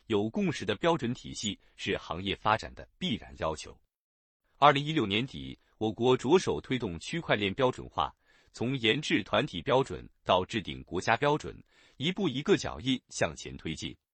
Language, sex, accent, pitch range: Chinese, male, native, 95-150 Hz